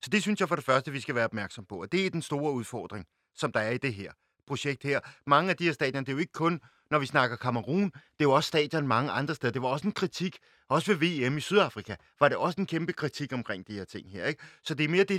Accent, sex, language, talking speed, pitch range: native, male, Danish, 295 wpm, 125-170 Hz